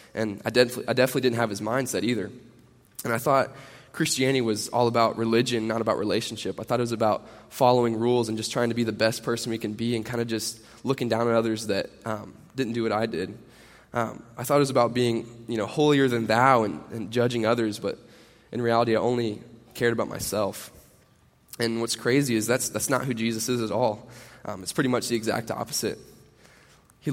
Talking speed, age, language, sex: 215 wpm, 10-29, English, male